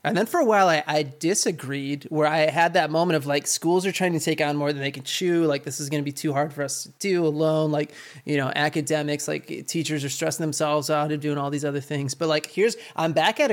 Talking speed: 270 wpm